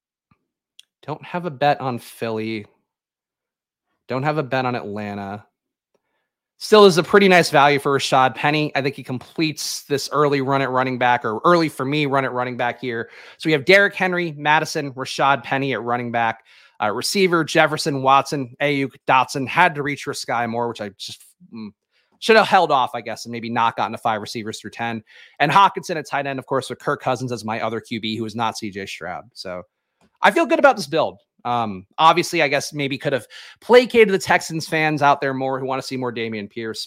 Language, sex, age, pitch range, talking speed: English, male, 30-49, 120-175 Hz, 210 wpm